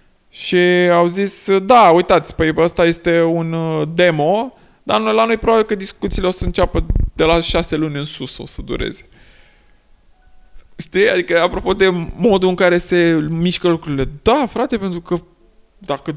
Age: 20-39